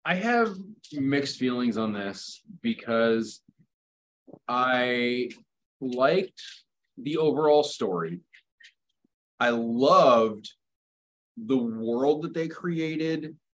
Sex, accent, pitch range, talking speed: male, American, 115-165 Hz, 85 wpm